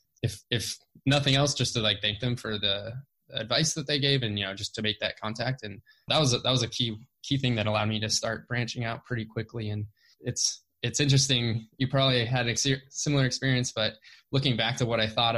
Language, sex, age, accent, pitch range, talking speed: English, male, 20-39, American, 105-125 Hz, 230 wpm